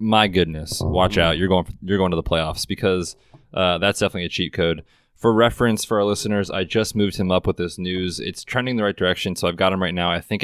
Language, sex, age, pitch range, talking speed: English, male, 20-39, 90-105 Hz, 260 wpm